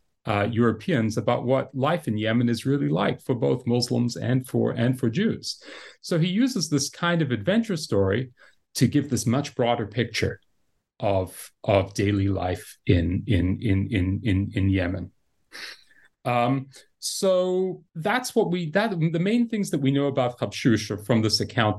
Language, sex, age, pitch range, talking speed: English, male, 30-49, 105-160 Hz, 165 wpm